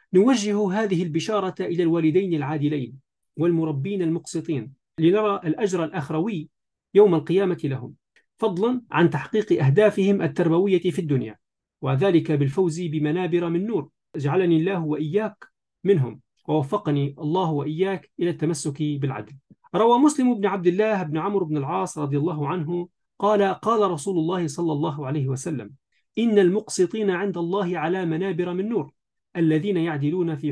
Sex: male